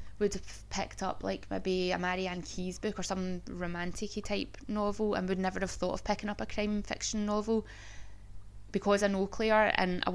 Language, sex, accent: English, female, British